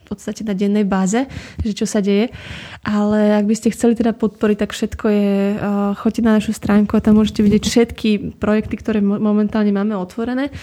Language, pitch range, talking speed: Slovak, 205-220 Hz, 185 wpm